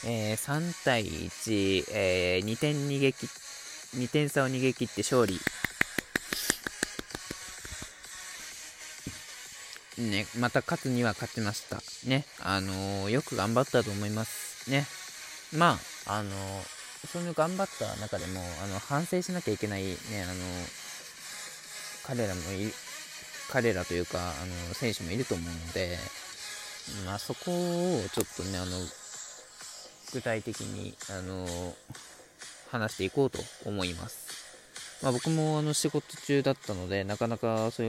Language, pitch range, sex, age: Japanese, 90-125 Hz, male, 20-39